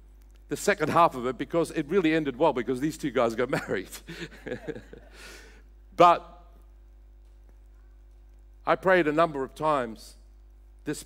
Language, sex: English, male